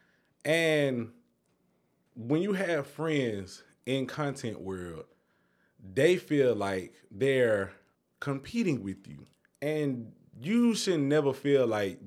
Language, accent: English, American